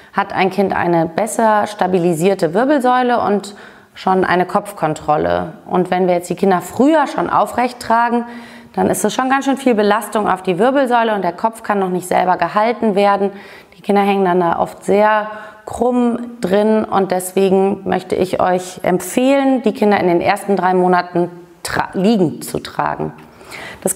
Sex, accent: female, German